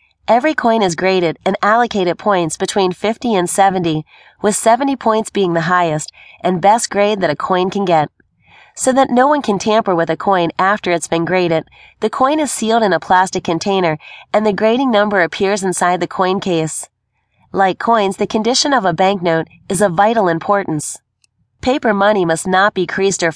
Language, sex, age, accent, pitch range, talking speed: English, female, 30-49, American, 170-210 Hz, 190 wpm